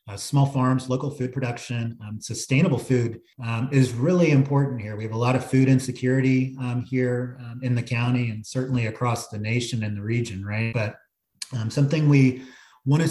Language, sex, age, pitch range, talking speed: English, male, 30-49, 105-130 Hz, 190 wpm